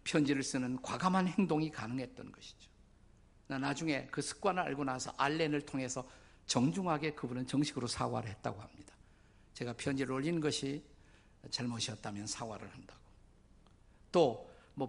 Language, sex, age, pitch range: Korean, male, 50-69, 125-160 Hz